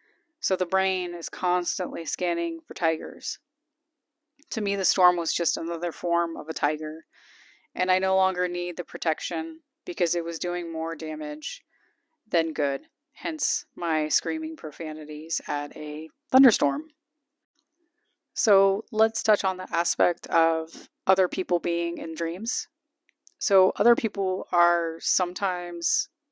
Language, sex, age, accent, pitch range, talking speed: English, female, 30-49, American, 170-265 Hz, 130 wpm